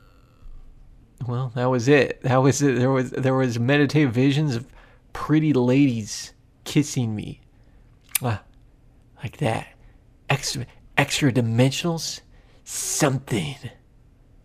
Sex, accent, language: male, American, English